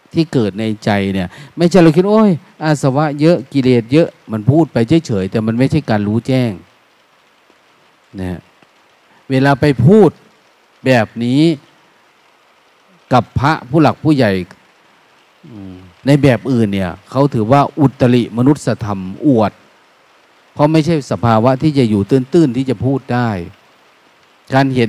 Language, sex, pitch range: Thai, male, 110-145 Hz